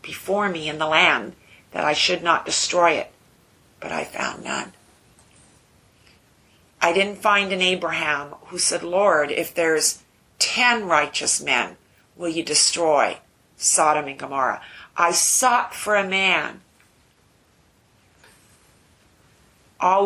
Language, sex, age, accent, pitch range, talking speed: English, female, 50-69, American, 155-195 Hz, 120 wpm